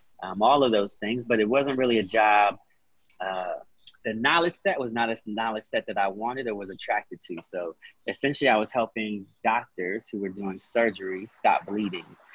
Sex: male